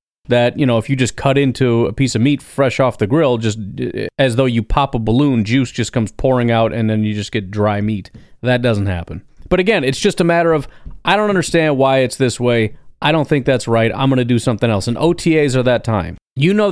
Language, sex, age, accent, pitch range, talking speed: English, male, 30-49, American, 120-160 Hz, 250 wpm